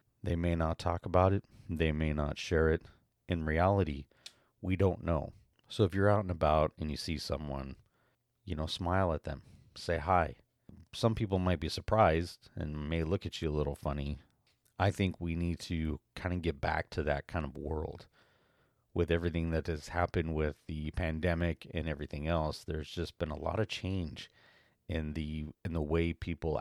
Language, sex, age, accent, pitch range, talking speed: English, male, 30-49, American, 80-95 Hz, 190 wpm